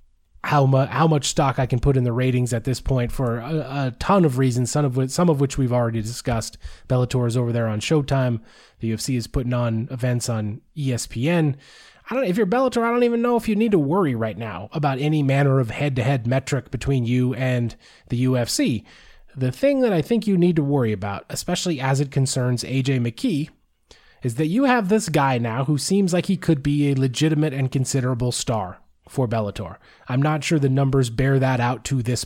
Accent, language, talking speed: American, English, 215 wpm